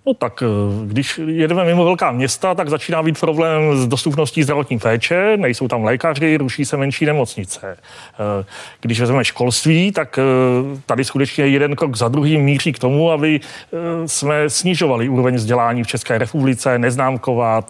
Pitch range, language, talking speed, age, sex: 125-150 Hz, Czech, 150 wpm, 30-49, male